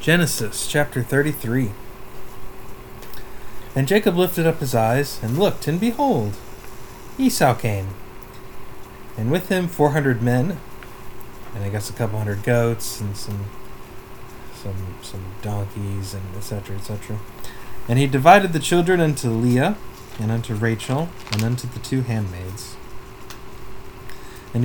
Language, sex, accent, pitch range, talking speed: English, male, American, 105-135 Hz, 125 wpm